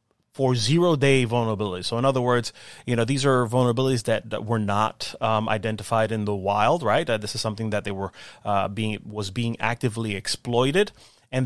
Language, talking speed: English, 195 wpm